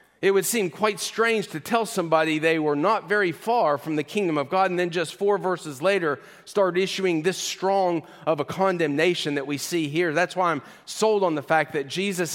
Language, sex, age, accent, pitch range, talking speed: English, male, 40-59, American, 155-195 Hz, 215 wpm